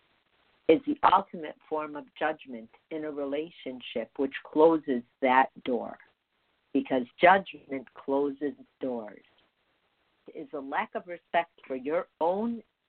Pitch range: 140-210 Hz